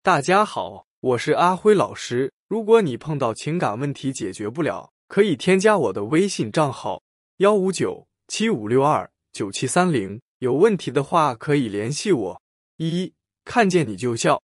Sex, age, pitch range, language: male, 20-39, 125-185 Hz, Chinese